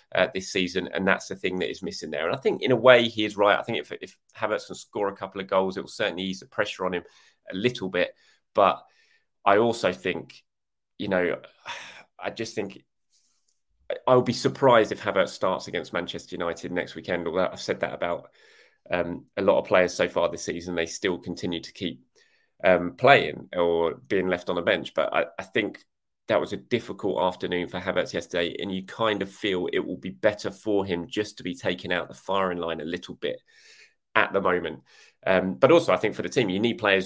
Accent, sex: British, male